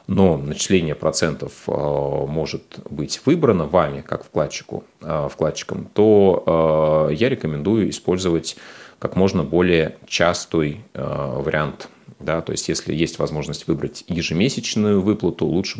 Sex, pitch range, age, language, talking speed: male, 75-95 Hz, 30-49, Russian, 105 wpm